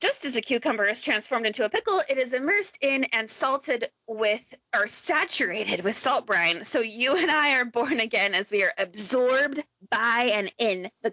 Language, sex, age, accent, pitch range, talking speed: English, female, 20-39, American, 210-305 Hz, 195 wpm